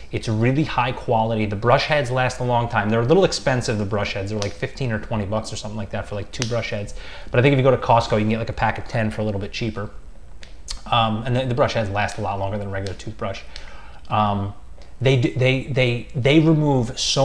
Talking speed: 260 wpm